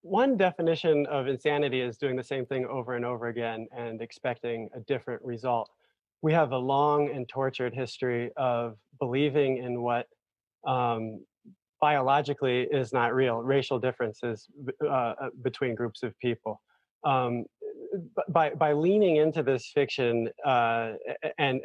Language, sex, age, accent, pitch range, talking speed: English, male, 20-39, American, 120-140 Hz, 140 wpm